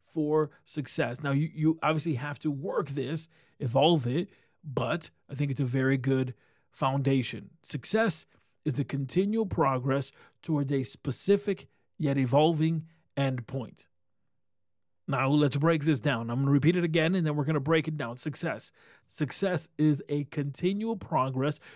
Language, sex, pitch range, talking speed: English, male, 135-165 Hz, 155 wpm